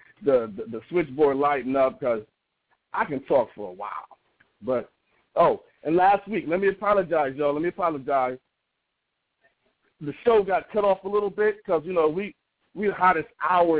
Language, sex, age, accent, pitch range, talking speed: English, male, 40-59, American, 140-175 Hz, 180 wpm